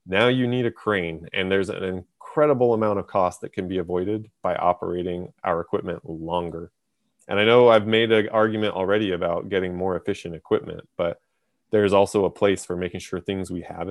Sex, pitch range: male, 90-110 Hz